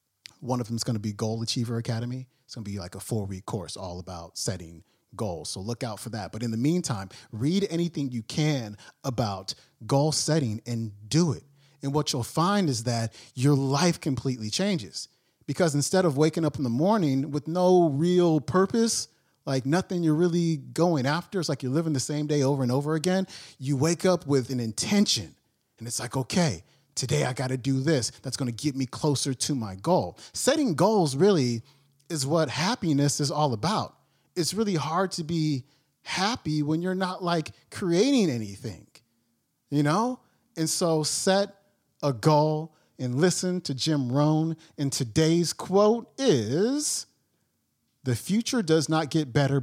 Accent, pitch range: American, 120-165 Hz